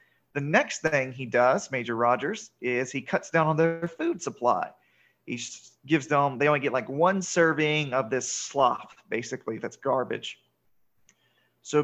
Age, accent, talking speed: 40-59, American, 155 wpm